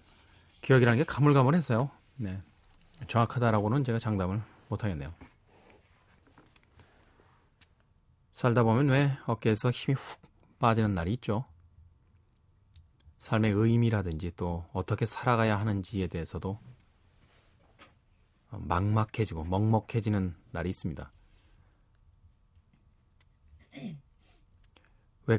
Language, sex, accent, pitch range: Korean, male, native, 90-115 Hz